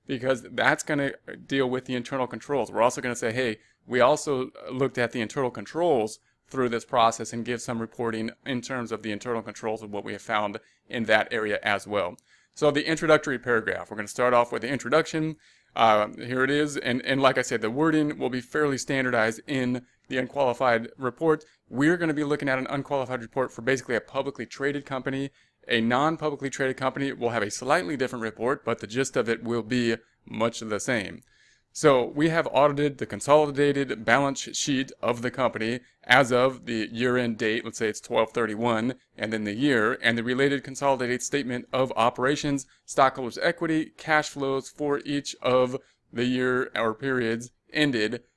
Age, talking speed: 30-49, 190 wpm